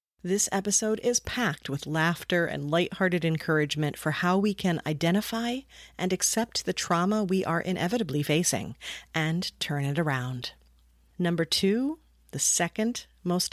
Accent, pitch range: American, 155-200 Hz